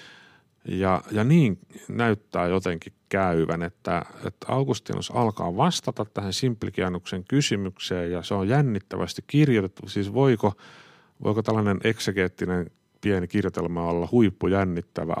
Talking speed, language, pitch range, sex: 110 wpm, Finnish, 90-125 Hz, male